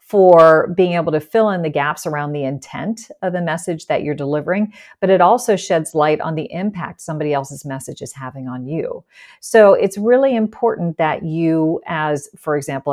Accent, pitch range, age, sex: American, 155-195 Hz, 40-59, female